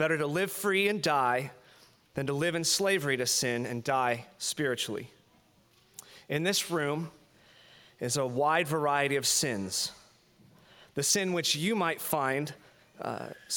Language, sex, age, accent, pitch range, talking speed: English, male, 30-49, American, 140-180 Hz, 140 wpm